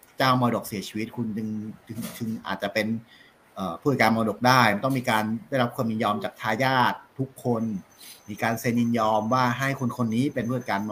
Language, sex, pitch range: Thai, male, 110-135 Hz